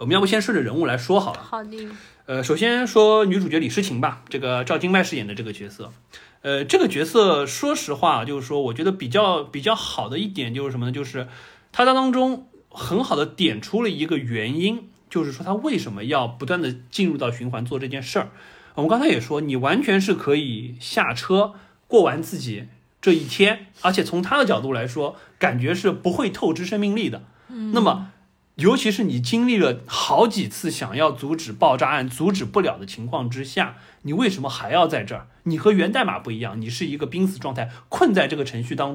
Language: Chinese